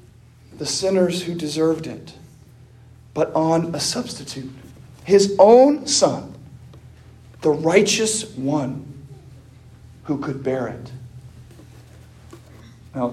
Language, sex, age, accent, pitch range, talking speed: English, male, 40-59, American, 125-205 Hz, 90 wpm